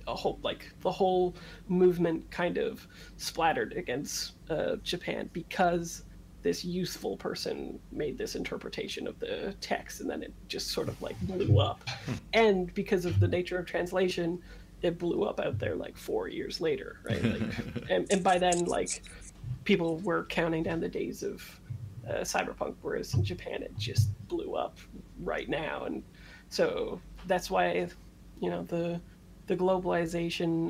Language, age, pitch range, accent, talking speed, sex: English, 30-49, 170-195 Hz, American, 155 wpm, female